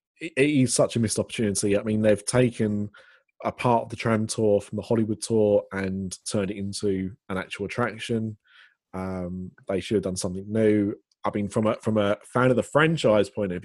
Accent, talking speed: British, 205 wpm